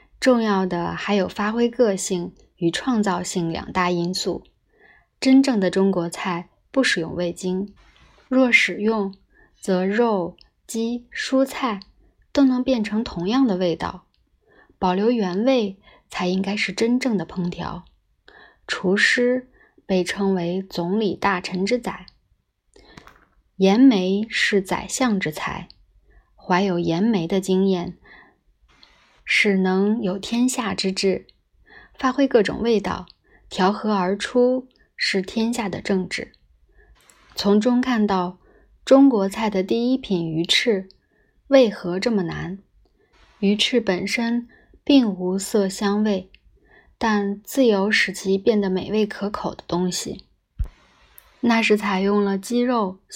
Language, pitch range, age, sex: Chinese, 185-235 Hz, 20-39, female